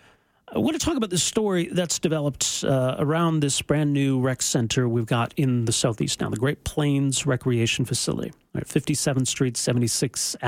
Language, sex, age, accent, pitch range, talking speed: English, male, 40-59, American, 120-155 Hz, 170 wpm